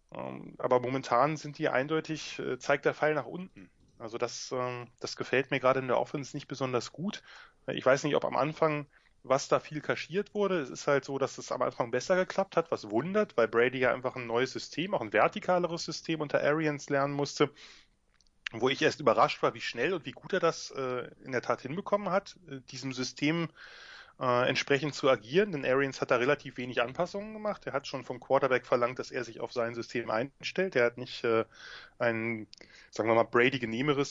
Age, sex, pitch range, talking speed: 10-29, male, 120-160 Hz, 200 wpm